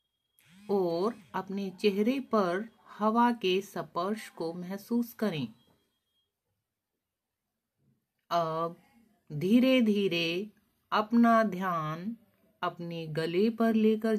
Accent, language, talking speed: native, Hindi, 80 wpm